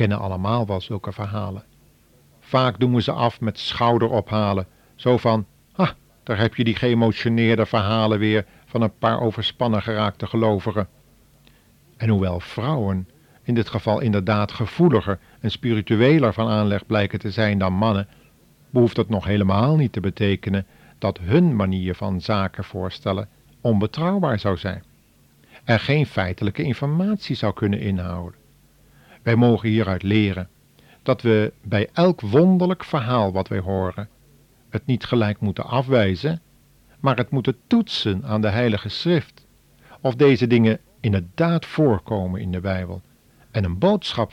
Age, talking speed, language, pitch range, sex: 50-69, 145 wpm, Dutch, 100-125 Hz, male